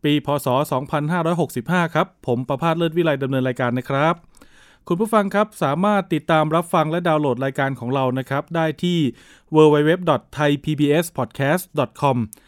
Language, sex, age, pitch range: Thai, male, 20-39, 130-165 Hz